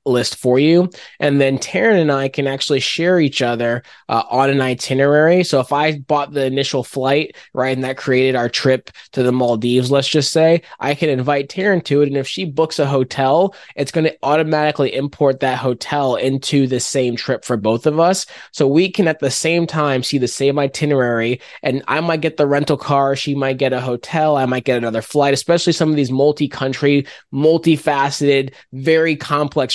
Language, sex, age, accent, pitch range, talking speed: English, male, 20-39, American, 130-155 Hz, 200 wpm